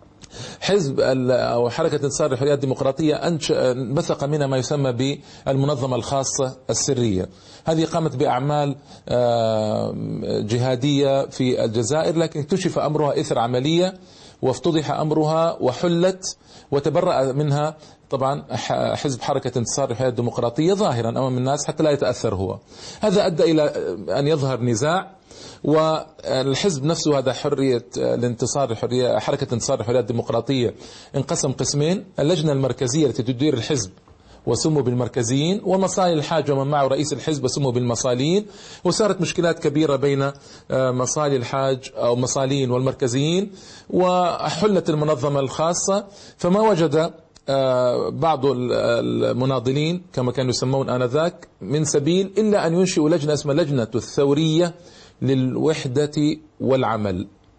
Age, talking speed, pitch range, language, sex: 40-59, 110 wpm, 130-165 Hz, Arabic, male